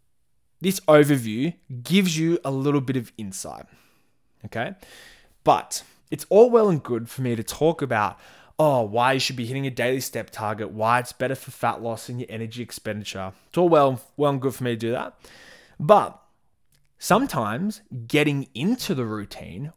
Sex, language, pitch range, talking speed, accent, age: male, English, 110-150 Hz, 175 wpm, Australian, 20-39